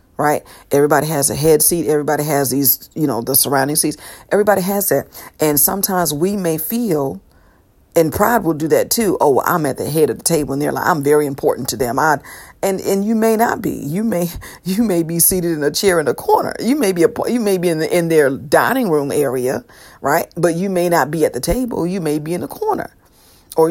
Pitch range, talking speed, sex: 140-190 Hz, 240 wpm, female